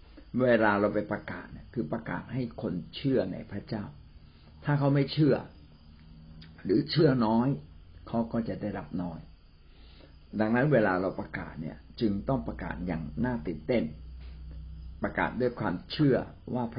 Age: 60-79